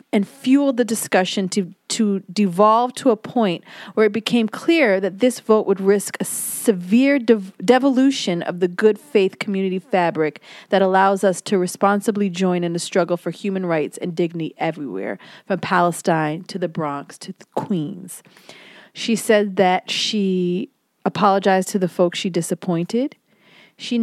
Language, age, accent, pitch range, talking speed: English, 40-59, American, 170-210 Hz, 155 wpm